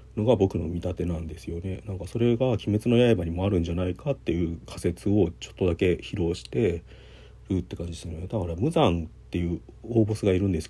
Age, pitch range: 40-59, 85-110 Hz